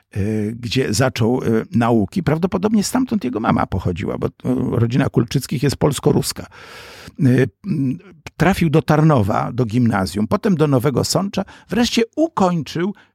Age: 50-69